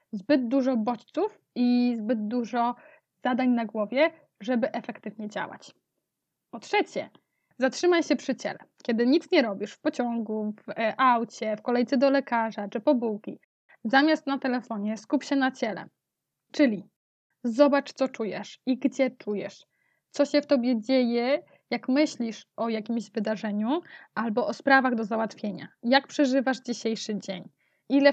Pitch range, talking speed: 225-275 Hz, 145 wpm